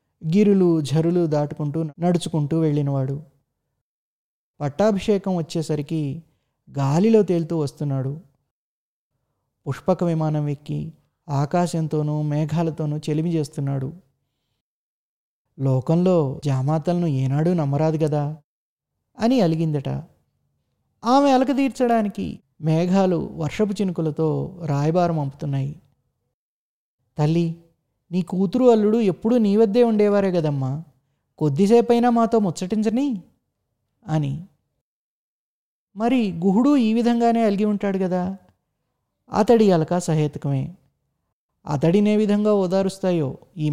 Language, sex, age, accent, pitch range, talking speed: Telugu, male, 20-39, native, 145-195 Hz, 80 wpm